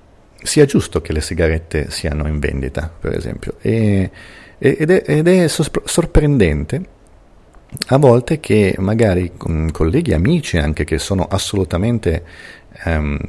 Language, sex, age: Italian, male, 40-59